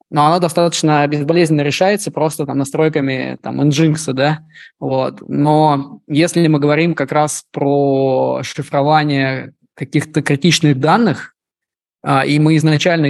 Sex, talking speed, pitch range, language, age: male, 120 wpm, 140-160 Hz, Russian, 20-39